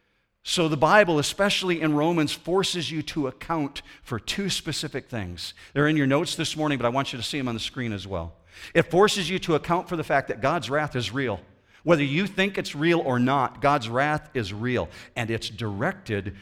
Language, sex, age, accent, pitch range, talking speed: English, male, 50-69, American, 100-155 Hz, 215 wpm